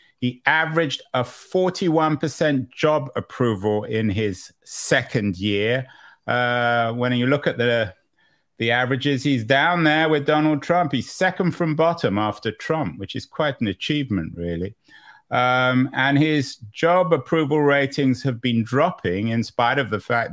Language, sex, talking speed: English, male, 150 wpm